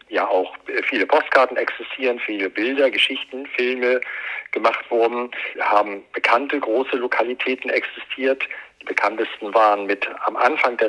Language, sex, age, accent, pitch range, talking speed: German, male, 50-69, German, 105-140 Hz, 125 wpm